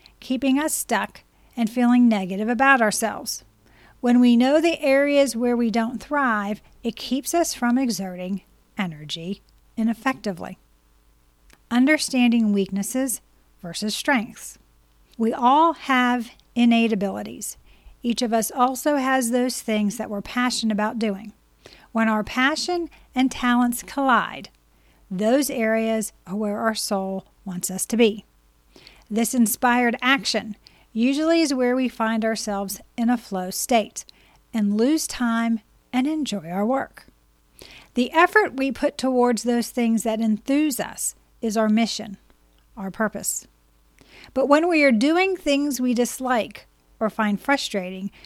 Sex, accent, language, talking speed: female, American, English, 135 wpm